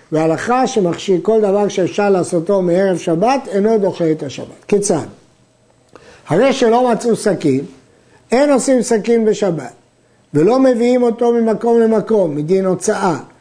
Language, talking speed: Hebrew, 125 wpm